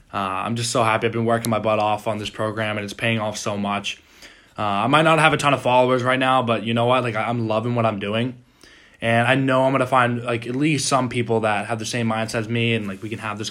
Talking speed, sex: 300 wpm, male